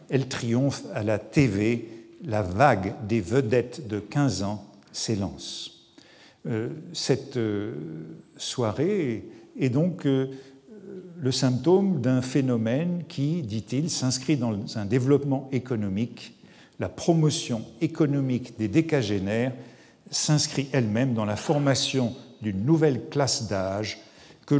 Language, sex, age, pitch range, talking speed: French, male, 50-69, 105-140 Hz, 105 wpm